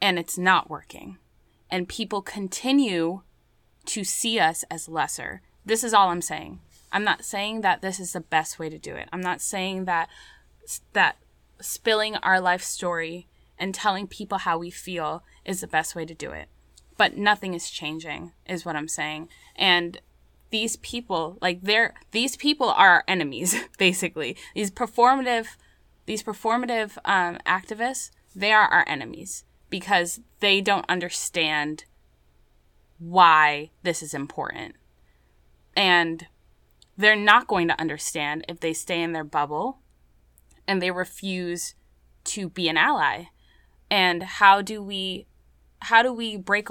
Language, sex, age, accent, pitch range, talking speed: English, female, 10-29, American, 165-205 Hz, 150 wpm